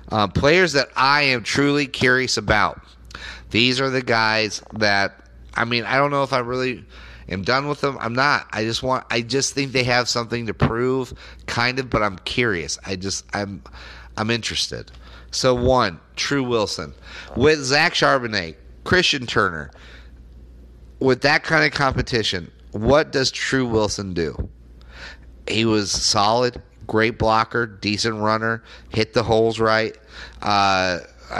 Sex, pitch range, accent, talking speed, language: male, 95-125 Hz, American, 150 wpm, English